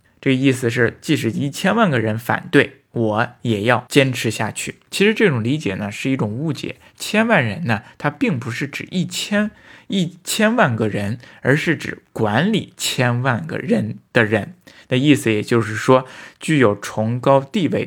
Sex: male